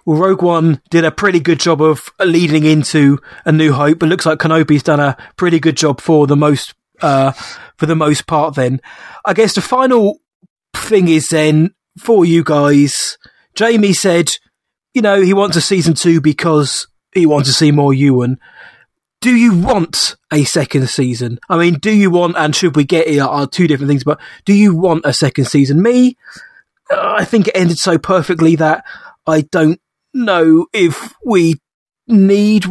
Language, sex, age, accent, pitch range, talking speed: English, male, 20-39, British, 145-190 Hz, 185 wpm